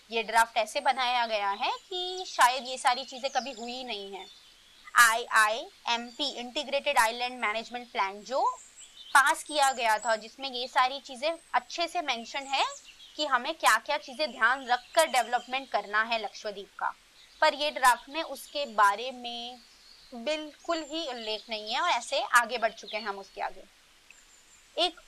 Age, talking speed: 20-39, 165 wpm